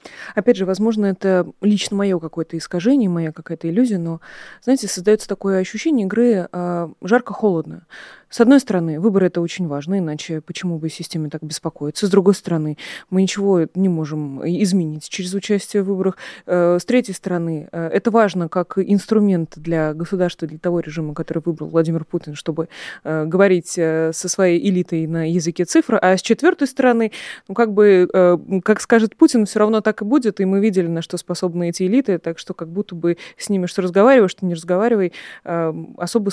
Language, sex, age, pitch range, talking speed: Russian, female, 20-39, 165-205 Hz, 170 wpm